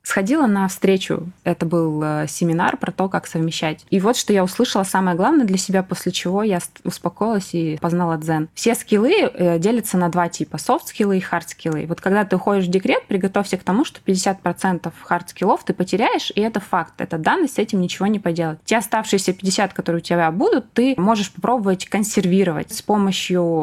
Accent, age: native, 20-39